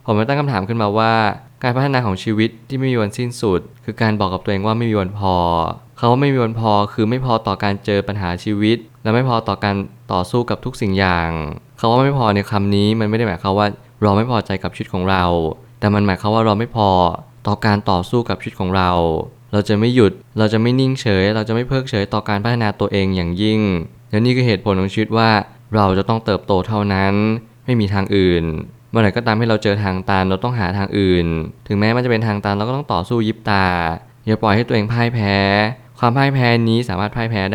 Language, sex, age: Thai, male, 20-39